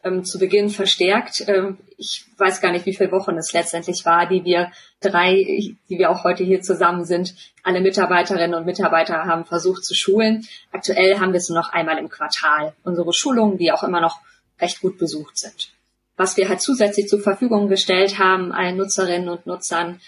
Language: German